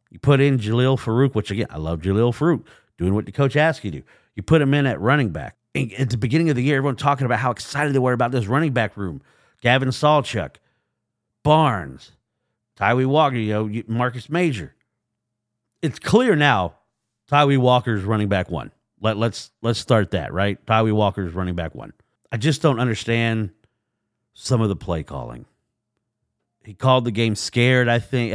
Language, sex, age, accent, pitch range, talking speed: English, male, 40-59, American, 105-135 Hz, 195 wpm